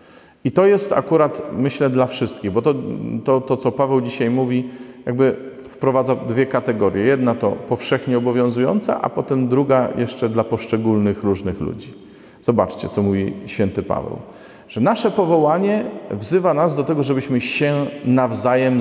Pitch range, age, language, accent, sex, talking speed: 105-135 Hz, 40-59, Polish, native, male, 145 wpm